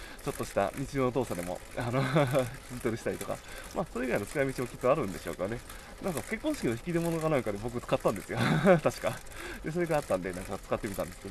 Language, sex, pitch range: Japanese, male, 120-185 Hz